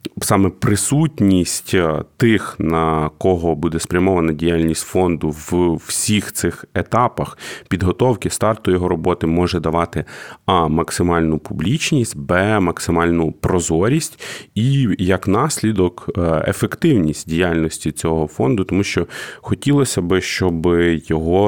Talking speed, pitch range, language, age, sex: 105 wpm, 85-115 Hz, Ukrainian, 30-49, male